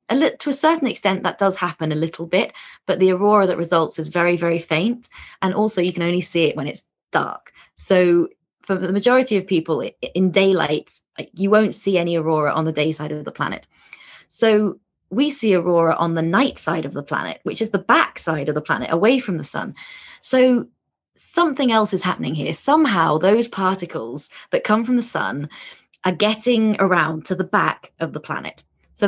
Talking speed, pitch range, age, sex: 200 wpm, 165-215 Hz, 20-39, female